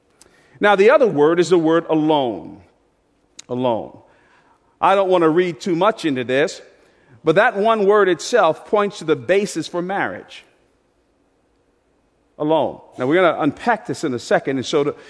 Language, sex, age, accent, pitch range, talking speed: English, male, 50-69, American, 165-245 Hz, 165 wpm